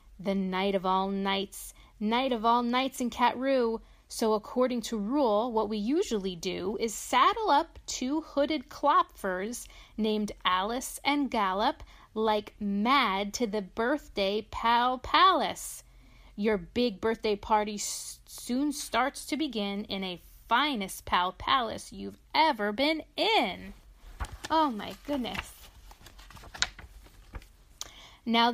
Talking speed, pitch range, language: 120 wpm, 200-275 Hz, English